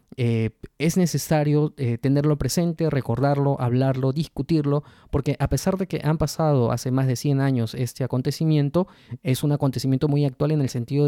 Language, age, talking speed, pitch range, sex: Spanish, 20-39, 170 wpm, 120-145 Hz, male